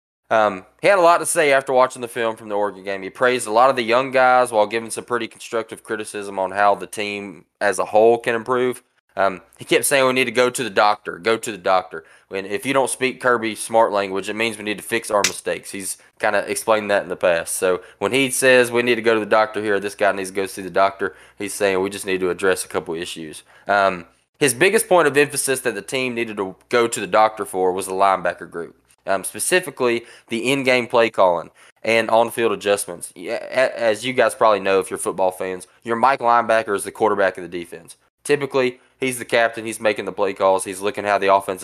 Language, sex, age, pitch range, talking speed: English, male, 20-39, 100-125 Hz, 240 wpm